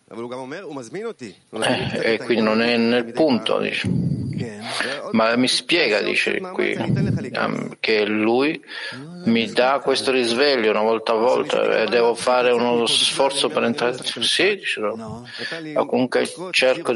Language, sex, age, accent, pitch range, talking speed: Italian, male, 50-69, native, 110-140 Hz, 125 wpm